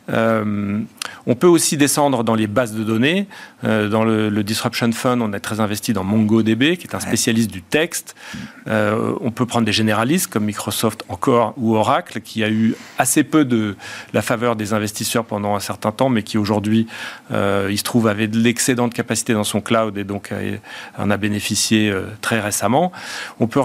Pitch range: 110-130 Hz